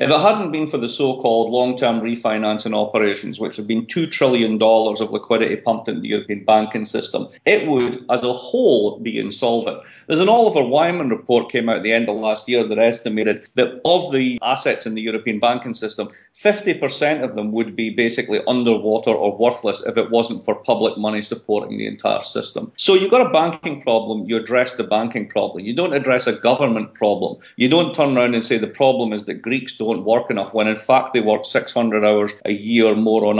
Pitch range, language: 110-130 Hz, English